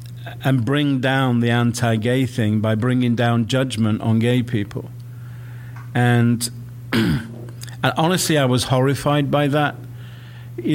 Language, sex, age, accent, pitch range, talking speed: English, male, 50-69, British, 115-130 Hz, 125 wpm